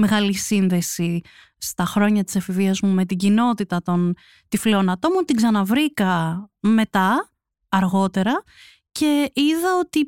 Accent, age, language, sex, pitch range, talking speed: native, 30-49, Greek, female, 180-215 Hz, 125 wpm